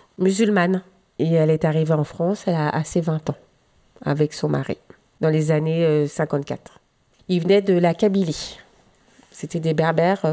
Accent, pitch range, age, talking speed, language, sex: French, 155-190 Hz, 40-59, 165 wpm, French, female